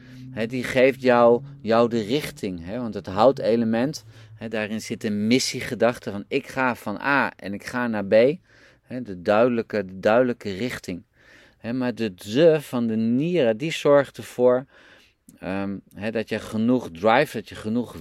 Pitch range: 110-130 Hz